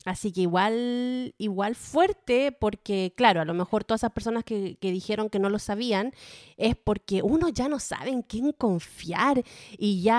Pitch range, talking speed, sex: 190-250 Hz, 185 wpm, female